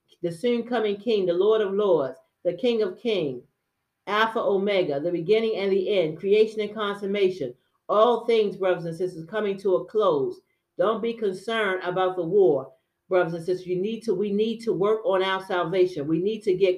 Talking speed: 195 wpm